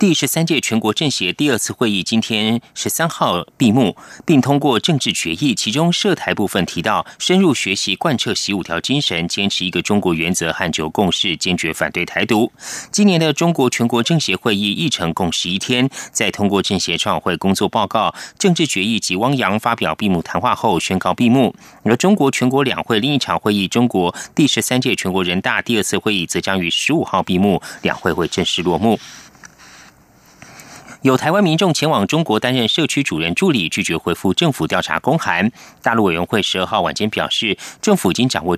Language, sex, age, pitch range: Chinese, male, 30-49, 95-145 Hz